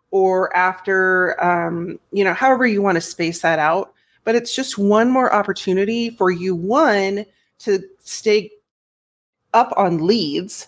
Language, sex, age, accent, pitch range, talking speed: English, female, 30-49, American, 180-215 Hz, 145 wpm